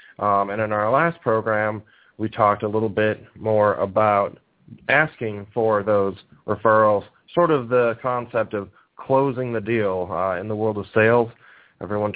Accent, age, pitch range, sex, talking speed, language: American, 30-49, 100-120 Hz, male, 160 wpm, English